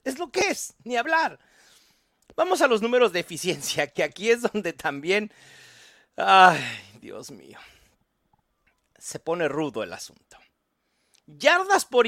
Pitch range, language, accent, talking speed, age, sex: 195-250 Hz, English, Mexican, 135 wpm, 40-59, male